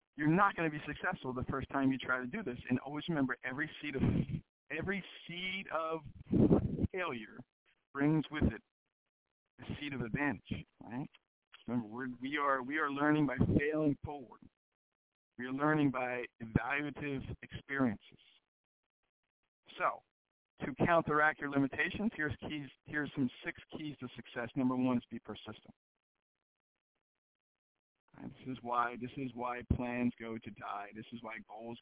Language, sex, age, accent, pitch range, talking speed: English, male, 50-69, American, 120-150 Hz, 150 wpm